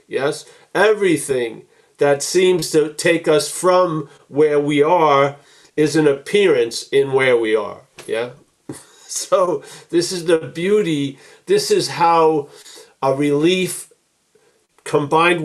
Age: 50-69